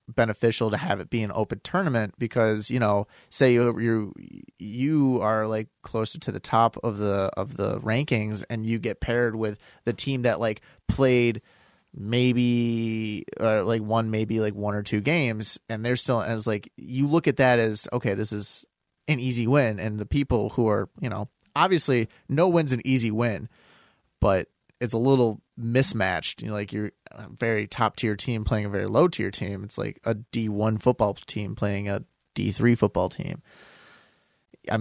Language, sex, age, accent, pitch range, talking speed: English, male, 30-49, American, 105-120 Hz, 190 wpm